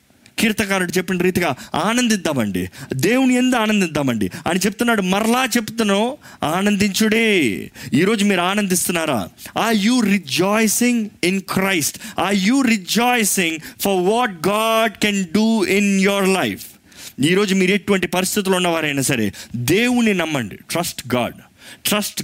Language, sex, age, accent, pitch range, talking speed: Telugu, male, 30-49, native, 175-225 Hz, 115 wpm